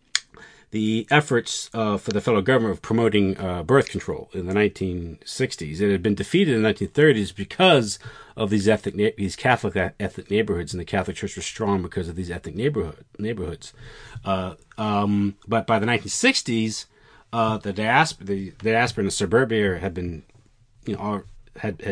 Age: 40-59